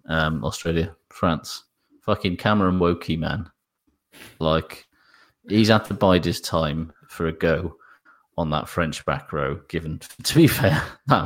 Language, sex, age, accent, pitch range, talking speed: English, male, 30-49, British, 80-95 Hz, 145 wpm